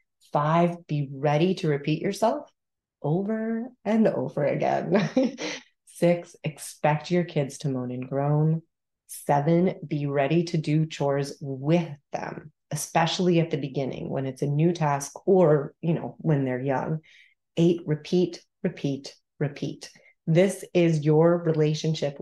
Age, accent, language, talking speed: 30-49, American, English, 130 wpm